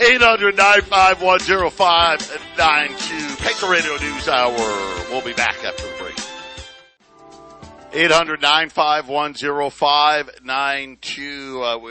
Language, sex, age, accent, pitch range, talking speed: English, male, 50-69, American, 125-145 Hz, 110 wpm